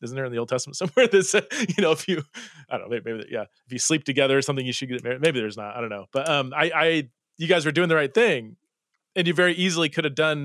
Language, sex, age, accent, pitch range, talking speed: English, male, 30-49, American, 120-155 Hz, 305 wpm